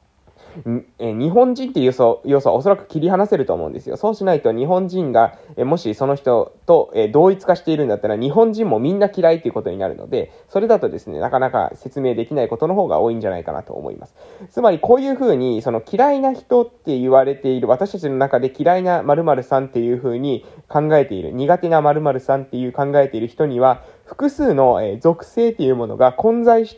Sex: male